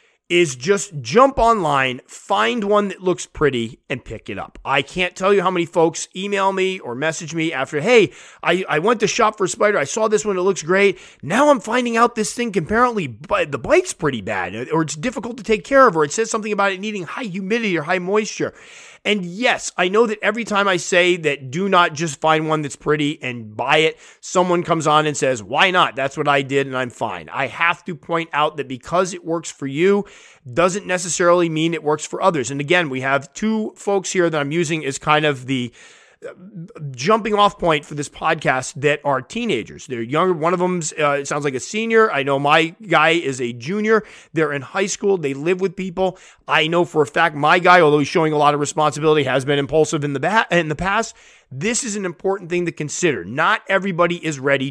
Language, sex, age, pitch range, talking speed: English, male, 30-49, 145-200 Hz, 225 wpm